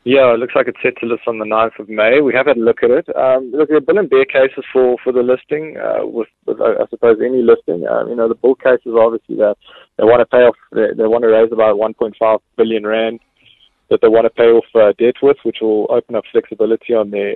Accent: South African